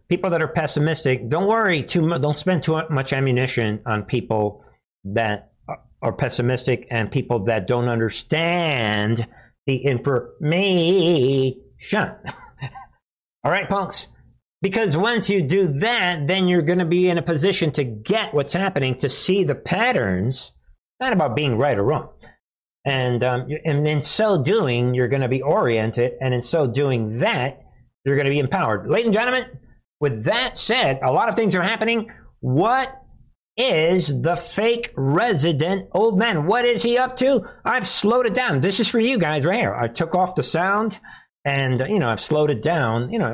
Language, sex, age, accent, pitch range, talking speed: English, male, 50-69, American, 130-215 Hz, 175 wpm